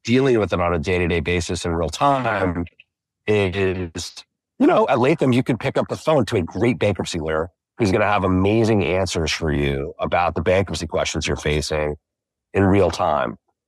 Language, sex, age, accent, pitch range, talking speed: English, male, 30-49, American, 90-115 Hz, 190 wpm